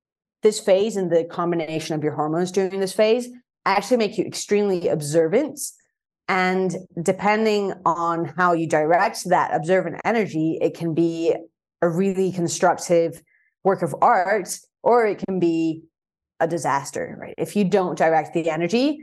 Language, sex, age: English, female, 30-49